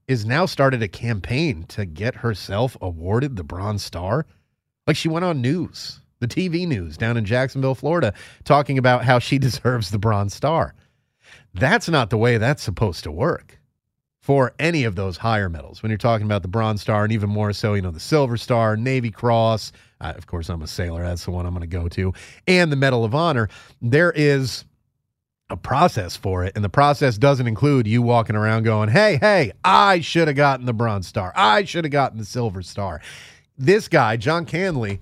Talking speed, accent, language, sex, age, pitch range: 200 wpm, American, English, male, 30-49, 105-145 Hz